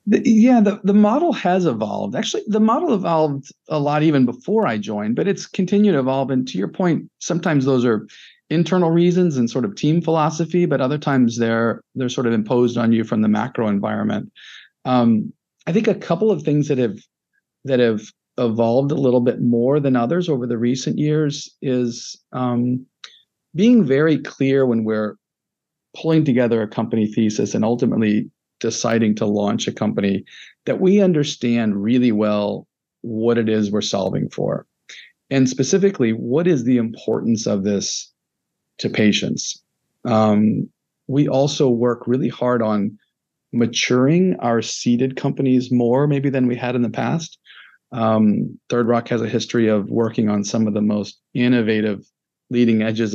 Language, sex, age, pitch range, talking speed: English, male, 40-59, 115-150 Hz, 165 wpm